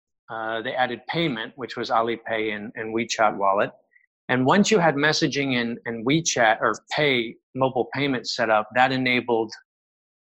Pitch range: 115-150 Hz